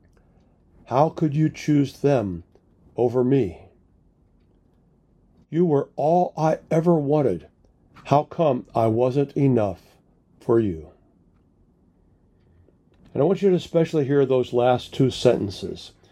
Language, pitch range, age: English, 95-145 Hz, 50-69